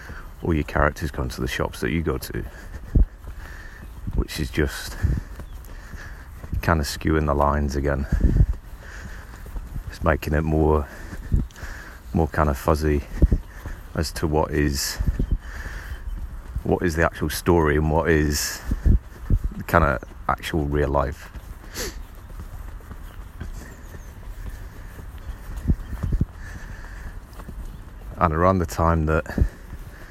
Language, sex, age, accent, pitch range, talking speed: English, male, 30-49, British, 75-90 Hz, 100 wpm